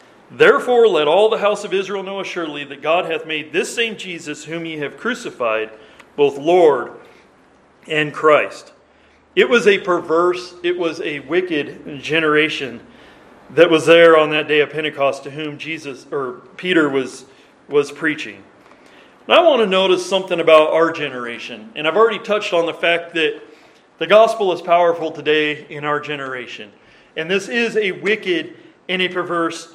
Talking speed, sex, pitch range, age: 165 wpm, male, 155-210 Hz, 40-59